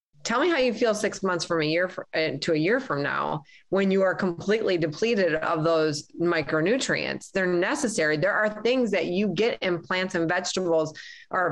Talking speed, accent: 190 wpm, American